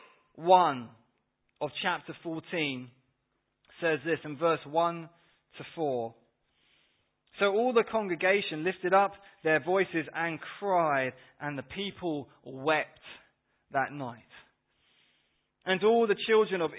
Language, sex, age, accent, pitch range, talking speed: English, male, 20-39, British, 135-195 Hz, 115 wpm